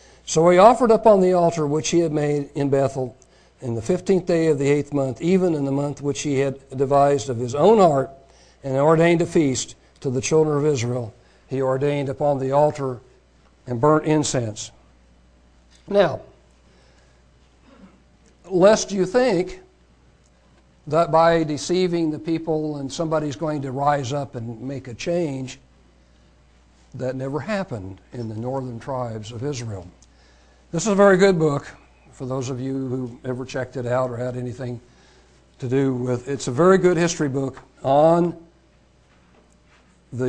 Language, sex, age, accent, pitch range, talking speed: English, male, 60-79, American, 95-155 Hz, 160 wpm